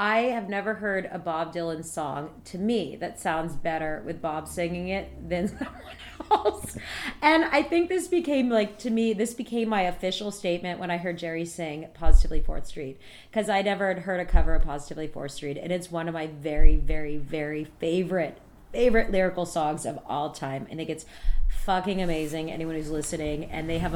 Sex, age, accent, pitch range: female, 30-49, American, 155-190 Hz